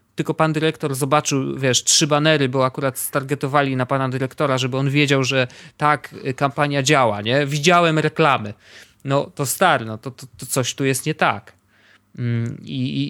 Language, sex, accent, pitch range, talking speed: Polish, male, native, 125-150 Hz, 170 wpm